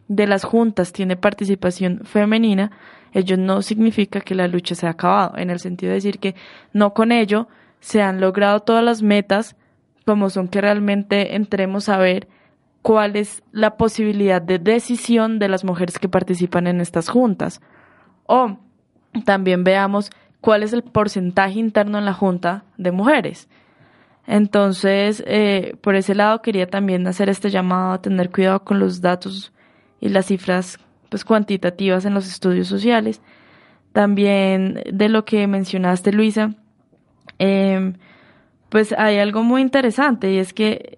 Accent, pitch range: Colombian, 185-215 Hz